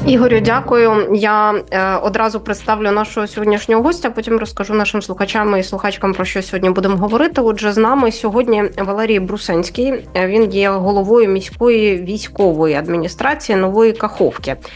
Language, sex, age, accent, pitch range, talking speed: Ukrainian, female, 20-39, native, 180-220 Hz, 135 wpm